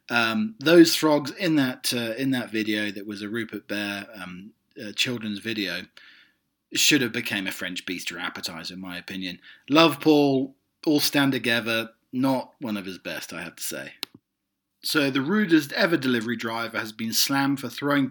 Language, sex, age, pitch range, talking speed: English, male, 40-59, 110-145 Hz, 175 wpm